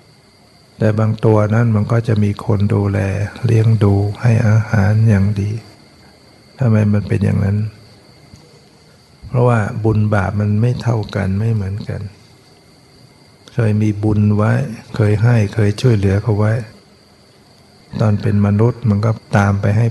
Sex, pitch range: male, 100-115 Hz